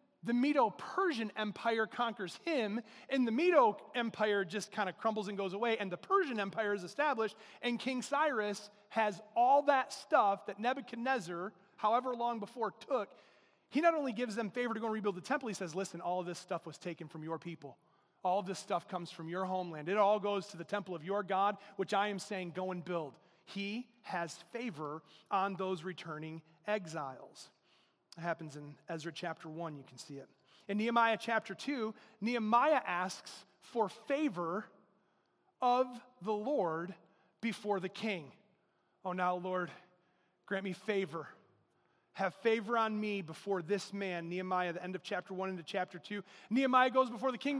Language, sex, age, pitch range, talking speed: English, male, 30-49, 185-240 Hz, 180 wpm